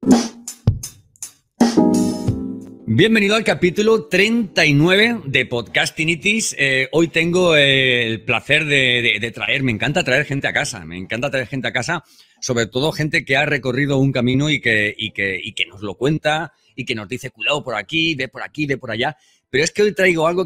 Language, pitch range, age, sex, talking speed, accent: Spanish, 110-160 Hz, 30-49, male, 190 wpm, Spanish